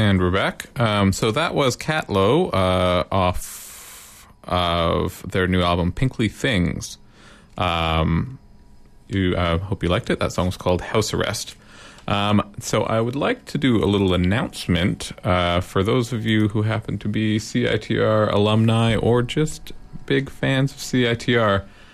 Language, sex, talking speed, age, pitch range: English, male, 150 wpm, 30-49, 95-120 Hz